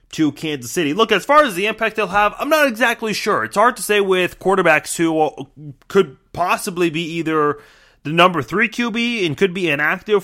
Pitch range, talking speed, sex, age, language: 140-195 Hz, 200 wpm, male, 30-49, English